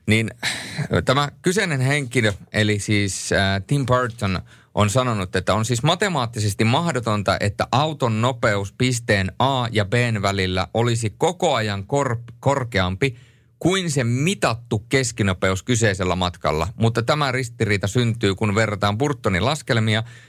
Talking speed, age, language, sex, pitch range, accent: 120 wpm, 30-49, Finnish, male, 100-125 Hz, native